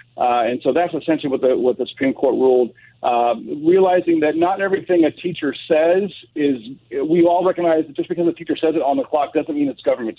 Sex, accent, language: male, American, English